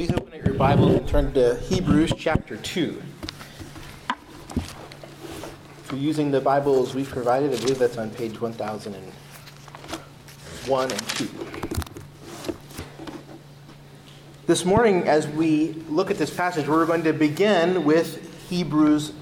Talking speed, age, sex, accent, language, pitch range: 130 wpm, 30-49, male, American, English, 130-160 Hz